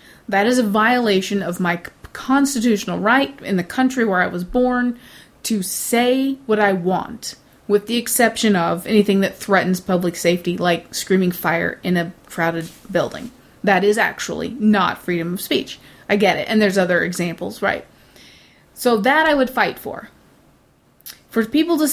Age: 30-49